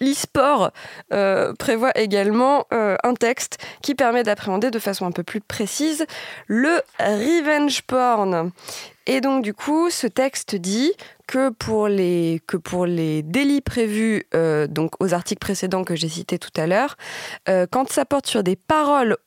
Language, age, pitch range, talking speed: French, 20-39, 190-255 Hz, 145 wpm